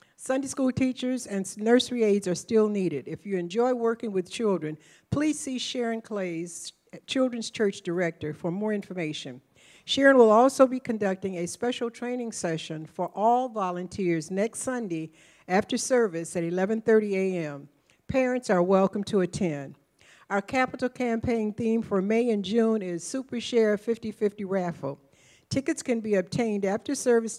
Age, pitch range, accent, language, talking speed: 60-79, 180-235 Hz, American, English, 150 wpm